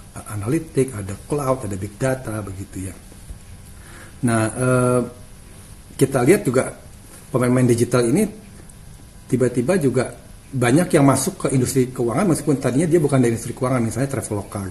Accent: native